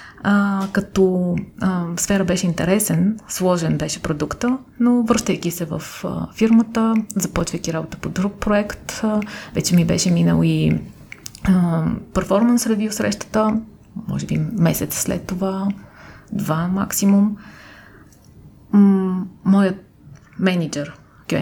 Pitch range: 180-215 Hz